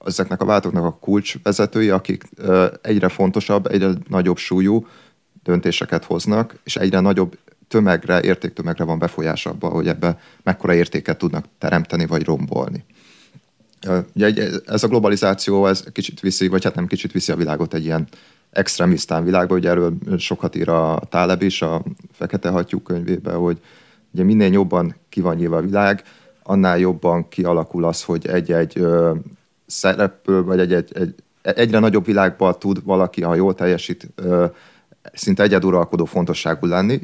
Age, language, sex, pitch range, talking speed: 30-49, Hungarian, male, 85-95 Hz, 145 wpm